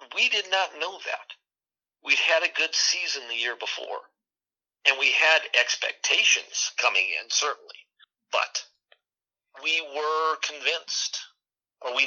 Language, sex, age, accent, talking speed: English, male, 50-69, American, 130 wpm